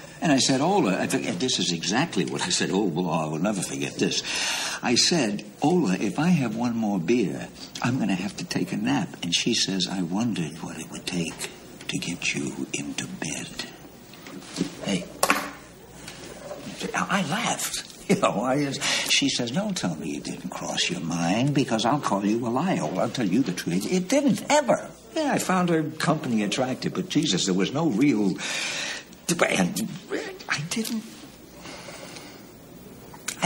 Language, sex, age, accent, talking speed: English, male, 60-79, American, 165 wpm